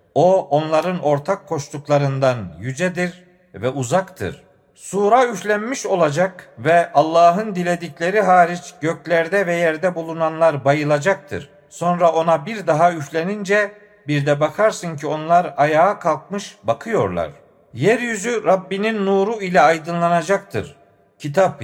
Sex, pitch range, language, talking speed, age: male, 145-185 Hz, Turkish, 105 wpm, 50-69